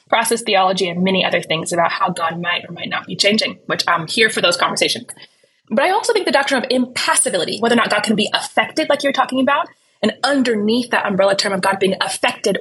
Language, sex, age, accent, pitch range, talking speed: English, female, 20-39, American, 195-255 Hz, 235 wpm